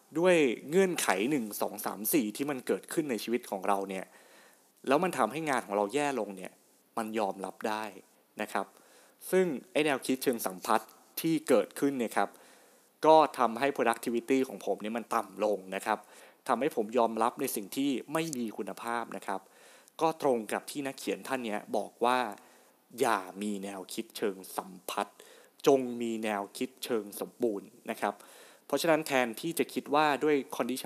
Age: 20-39